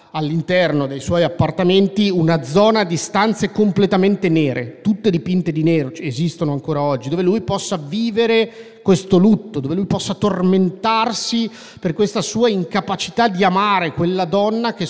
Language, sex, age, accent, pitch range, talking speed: Italian, male, 30-49, native, 155-210 Hz, 145 wpm